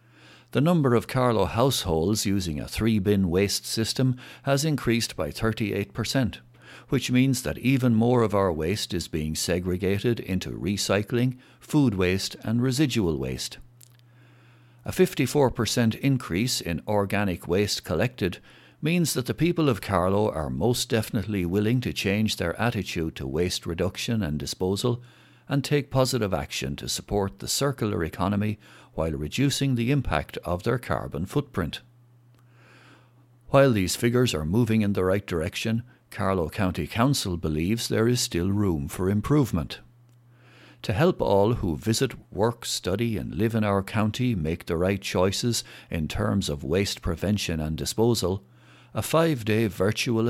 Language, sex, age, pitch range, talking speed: English, male, 60-79, 90-120 Hz, 145 wpm